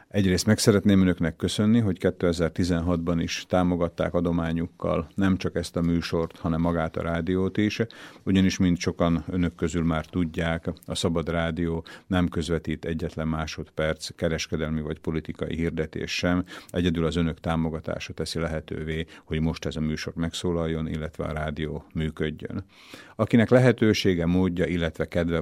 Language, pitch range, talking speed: Slovak, 80-90 Hz, 140 wpm